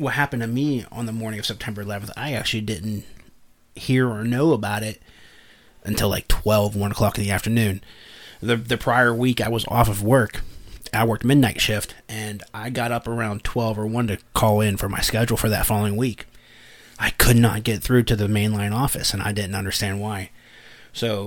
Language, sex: English, male